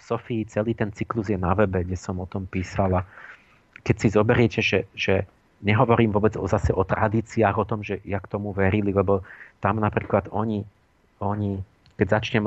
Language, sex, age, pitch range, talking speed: Slovak, male, 40-59, 100-115 Hz, 180 wpm